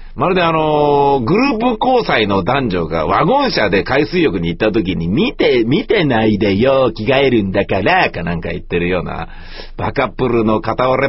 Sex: male